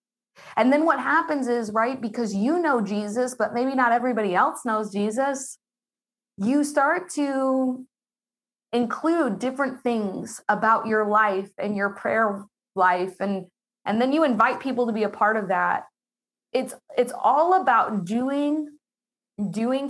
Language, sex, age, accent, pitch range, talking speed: English, female, 20-39, American, 215-270 Hz, 145 wpm